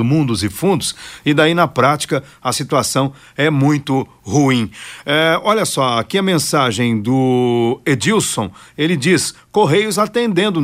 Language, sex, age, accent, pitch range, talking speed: Portuguese, male, 50-69, Brazilian, 130-165 Hz, 130 wpm